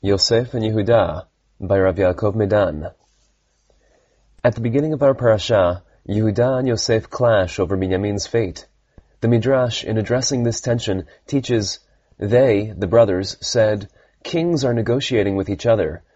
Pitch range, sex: 100-130 Hz, male